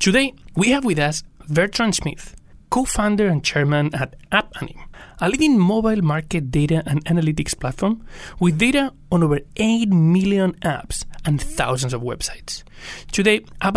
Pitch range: 150-205 Hz